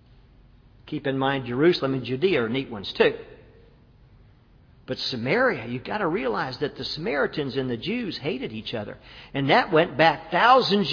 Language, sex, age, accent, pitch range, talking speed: English, male, 50-69, American, 120-165 Hz, 165 wpm